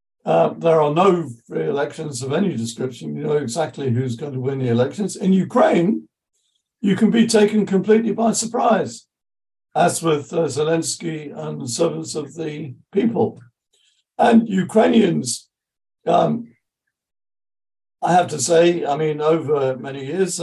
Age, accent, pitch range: 60-79, British, 130-205 Hz